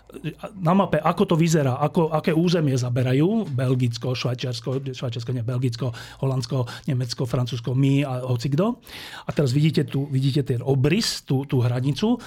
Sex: male